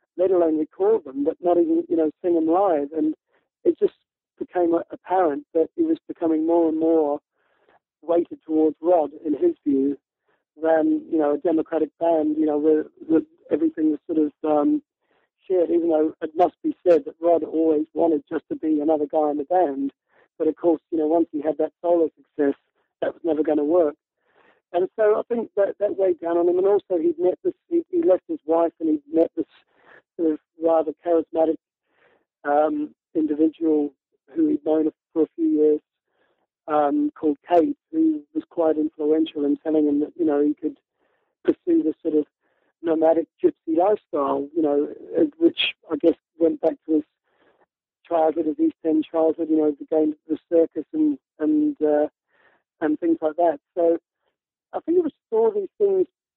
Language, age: English, 50-69